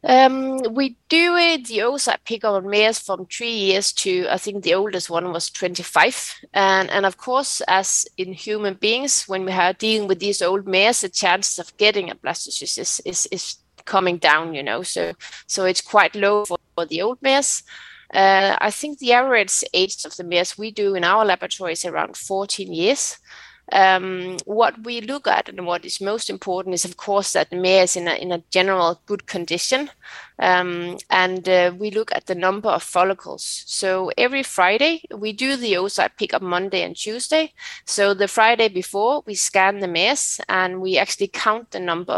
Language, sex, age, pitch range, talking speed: Danish, female, 20-39, 185-225 Hz, 195 wpm